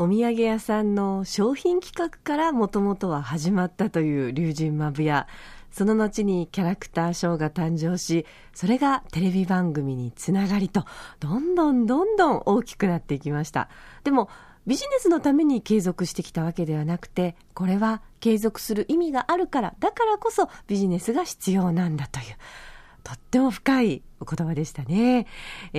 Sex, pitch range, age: female, 165-235 Hz, 40-59